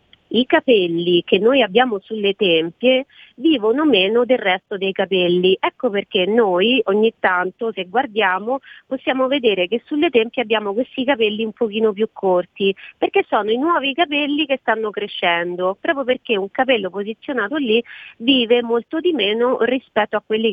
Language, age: Italian, 40-59